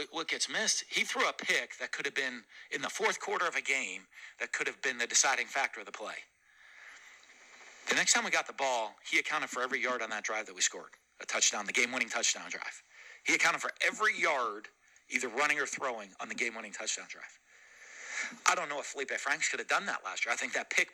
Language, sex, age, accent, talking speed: English, male, 40-59, American, 235 wpm